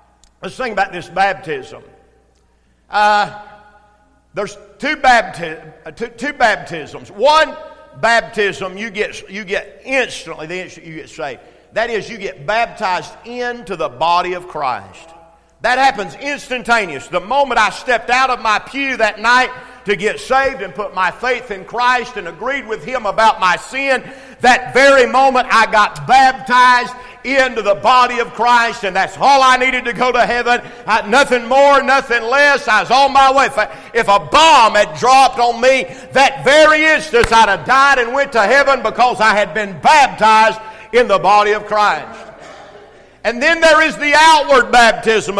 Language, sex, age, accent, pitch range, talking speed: English, male, 50-69, American, 205-265 Hz, 165 wpm